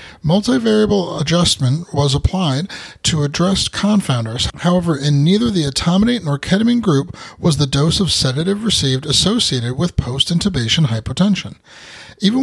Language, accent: English, American